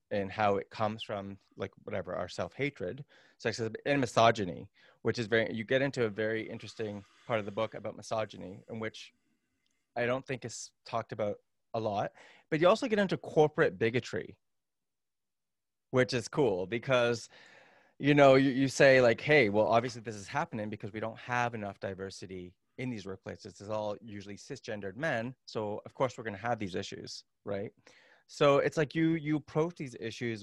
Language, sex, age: English, male, 20-39